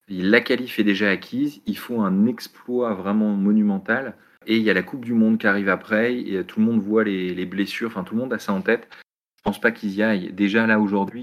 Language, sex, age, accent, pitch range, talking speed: French, male, 30-49, French, 95-115 Hz, 255 wpm